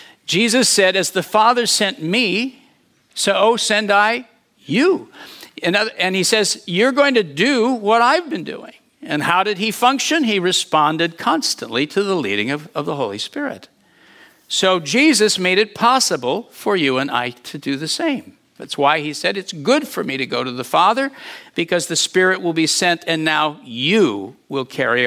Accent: American